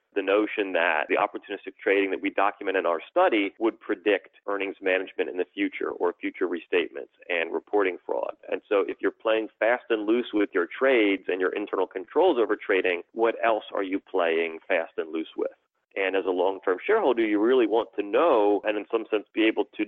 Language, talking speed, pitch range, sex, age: English, 205 wpm, 310-445 Hz, male, 30-49